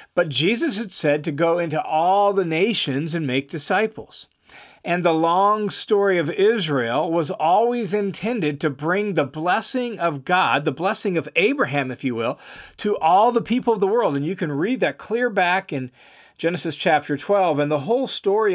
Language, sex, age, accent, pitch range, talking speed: English, male, 40-59, American, 150-205 Hz, 185 wpm